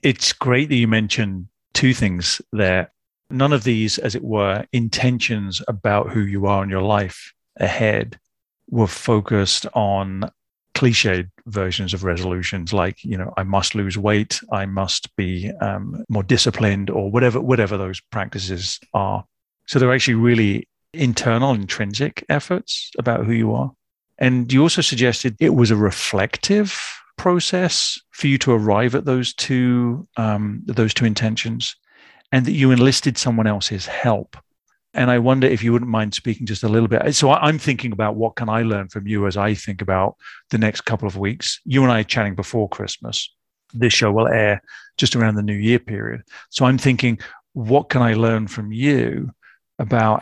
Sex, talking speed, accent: male, 175 wpm, British